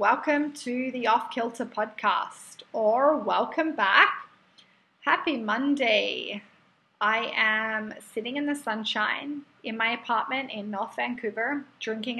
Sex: female